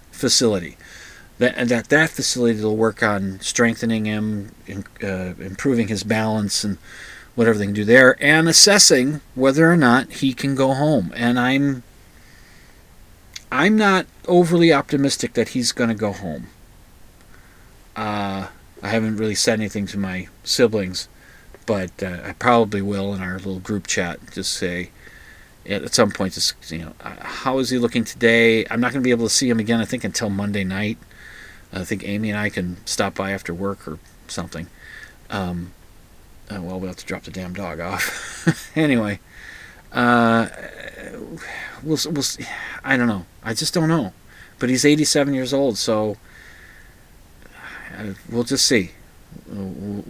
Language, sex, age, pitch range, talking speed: English, male, 40-59, 95-125 Hz, 165 wpm